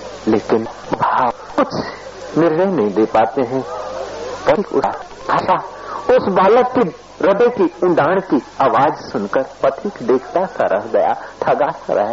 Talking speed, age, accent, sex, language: 135 wpm, 60-79, native, male, Hindi